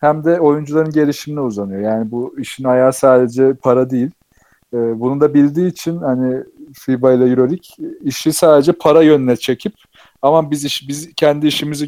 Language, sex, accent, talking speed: Turkish, male, native, 160 wpm